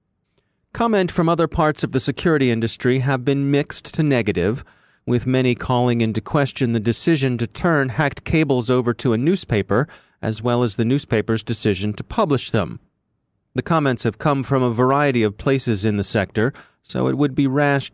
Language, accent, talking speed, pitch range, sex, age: English, American, 180 wpm, 110-140 Hz, male, 30-49